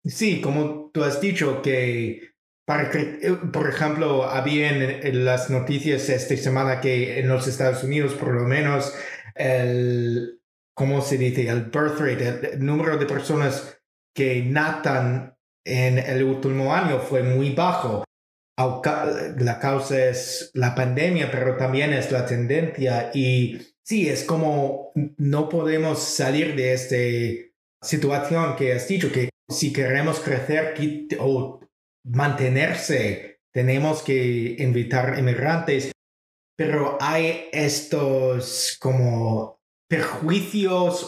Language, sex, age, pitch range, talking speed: English, male, 30-49, 130-150 Hz, 120 wpm